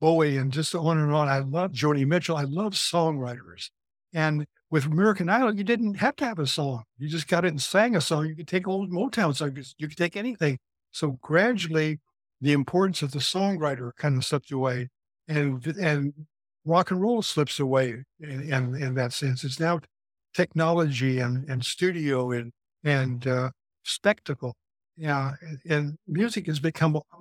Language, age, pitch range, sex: English, 60-79, 135-175 Hz, male